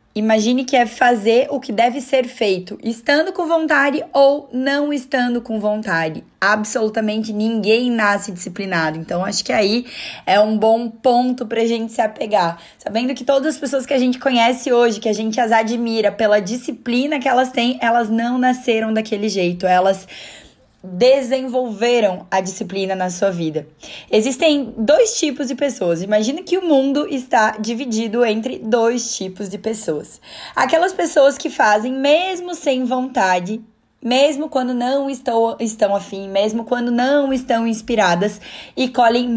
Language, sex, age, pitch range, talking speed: Portuguese, female, 10-29, 215-265 Hz, 150 wpm